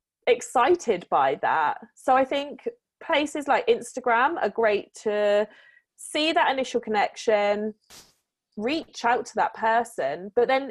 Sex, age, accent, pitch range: female, 20-39, British, 200-280 Hz